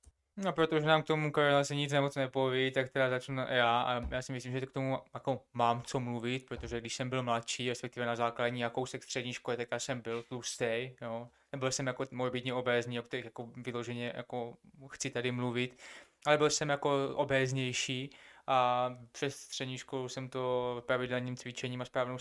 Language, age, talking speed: Czech, 20-39, 195 wpm